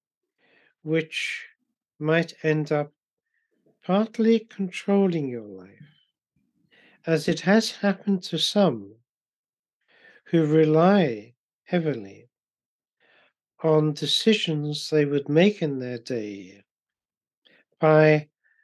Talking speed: 85 wpm